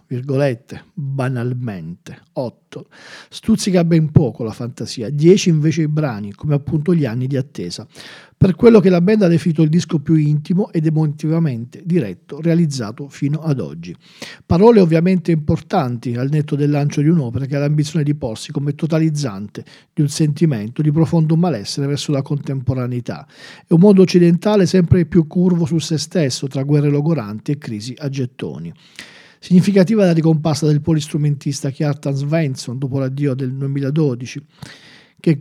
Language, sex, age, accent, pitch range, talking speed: Italian, male, 40-59, native, 140-170 Hz, 155 wpm